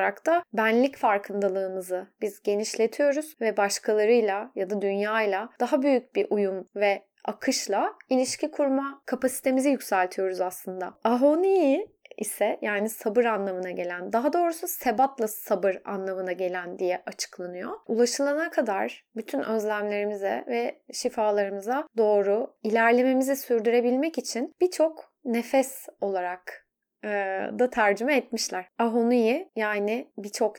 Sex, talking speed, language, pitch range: female, 105 wpm, Turkish, 200-255 Hz